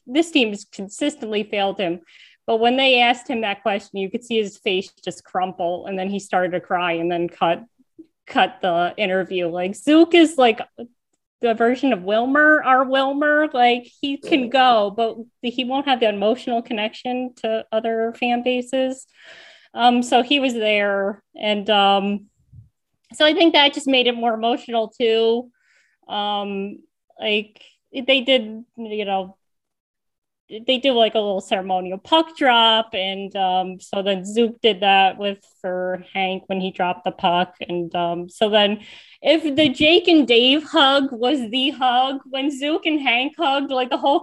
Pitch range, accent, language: 200-260 Hz, American, English